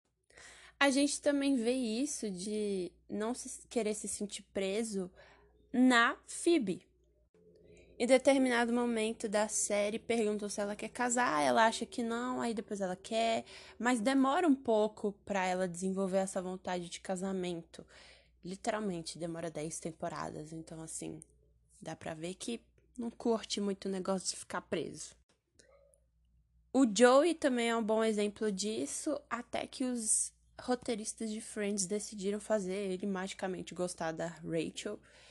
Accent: Brazilian